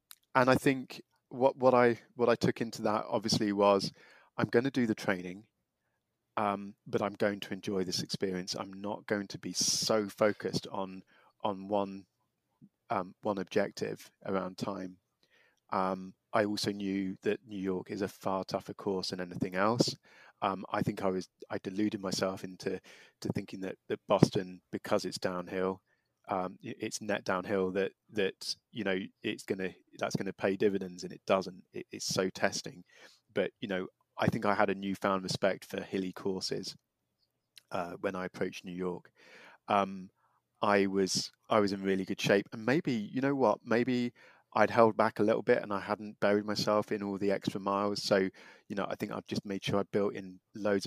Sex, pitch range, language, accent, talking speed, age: male, 95-105 Hz, English, British, 190 wpm, 30-49